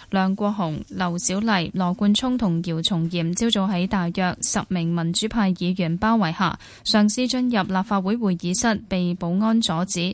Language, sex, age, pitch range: Chinese, female, 10-29, 180-225 Hz